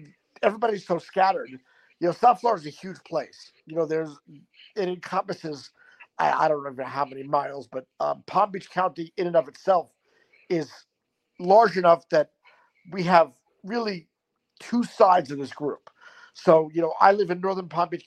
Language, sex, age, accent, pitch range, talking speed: English, male, 50-69, American, 160-195 Hz, 175 wpm